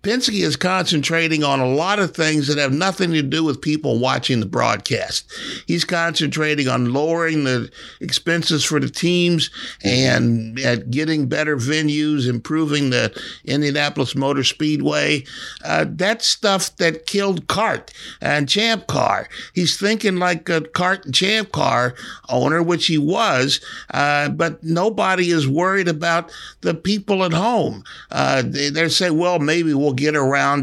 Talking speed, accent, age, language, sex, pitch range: 150 wpm, American, 50-69, English, male, 145-200 Hz